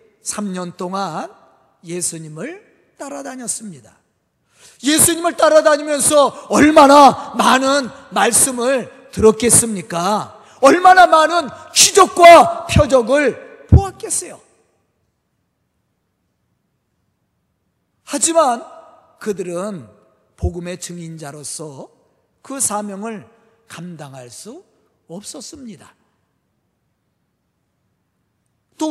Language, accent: Korean, native